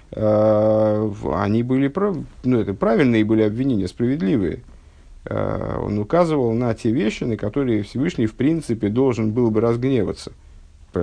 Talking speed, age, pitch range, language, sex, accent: 125 wpm, 50-69, 100-130 Hz, Russian, male, native